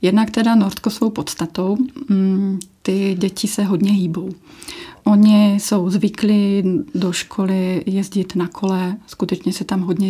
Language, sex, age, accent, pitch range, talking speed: Czech, female, 30-49, native, 190-210 Hz, 130 wpm